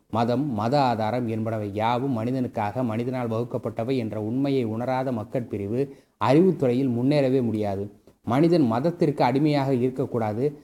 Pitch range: 120-145 Hz